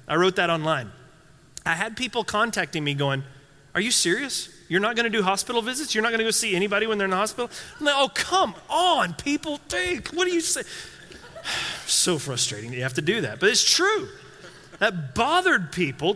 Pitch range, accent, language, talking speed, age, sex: 145-225 Hz, American, English, 205 wpm, 30-49, male